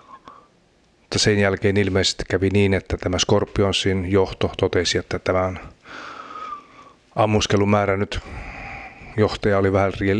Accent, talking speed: native, 95 wpm